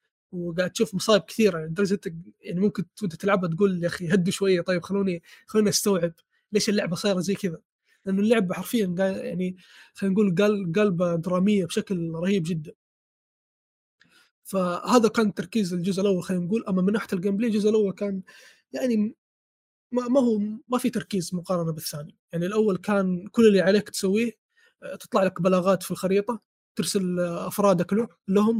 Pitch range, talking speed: 180-210 Hz, 155 wpm